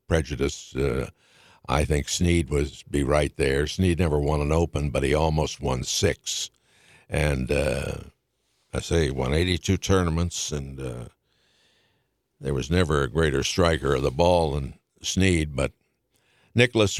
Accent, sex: American, male